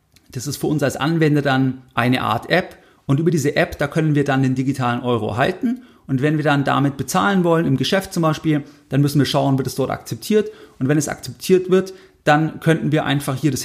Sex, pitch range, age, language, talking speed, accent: male, 130-160 Hz, 40-59, German, 230 wpm, German